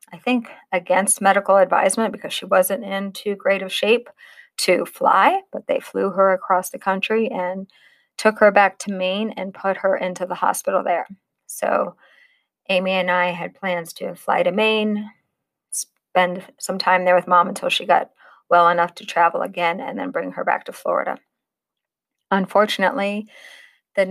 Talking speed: 170 wpm